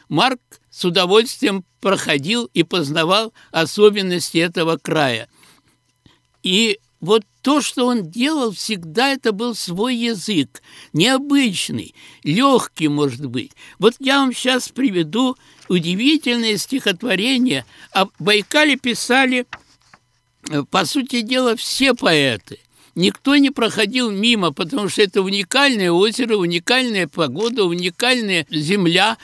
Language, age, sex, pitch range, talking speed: Russian, 60-79, male, 175-245 Hz, 105 wpm